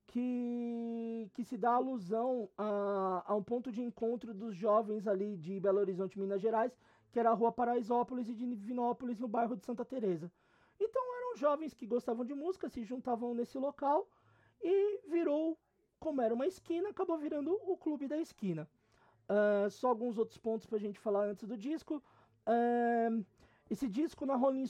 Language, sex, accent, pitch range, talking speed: Portuguese, male, Brazilian, 210-255 Hz, 175 wpm